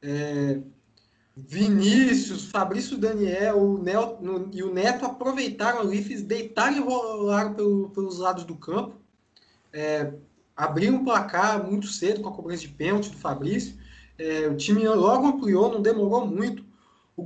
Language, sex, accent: Portuguese, male, Brazilian